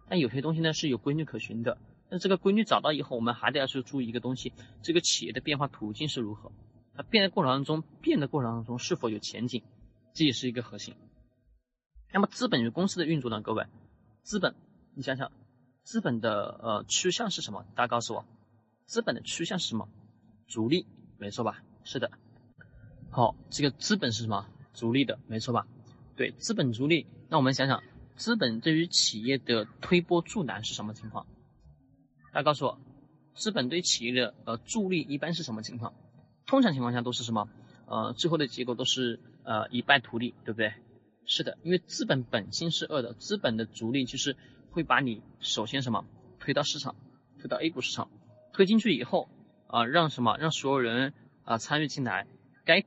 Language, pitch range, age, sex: Chinese, 115-150 Hz, 20-39, male